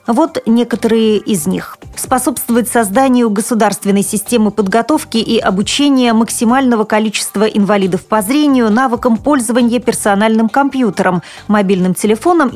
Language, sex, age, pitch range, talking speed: Russian, female, 30-49, 205-260 Hz, 105 wpm